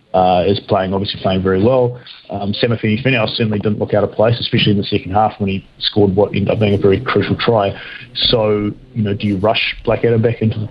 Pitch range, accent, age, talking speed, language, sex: 100-120 Hz, Australian, 30-49, 240 wpm, English, male